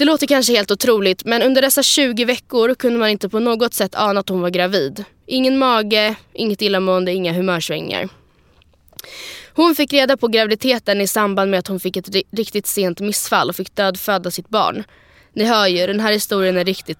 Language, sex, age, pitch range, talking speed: Swedish, female, 20-39, 190-235 Hz, 195 wpm